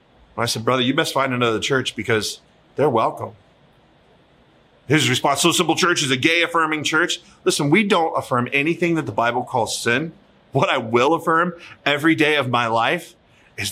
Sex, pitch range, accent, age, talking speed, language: male, 120-160 Hz, American, 30-49, 180 wpm, English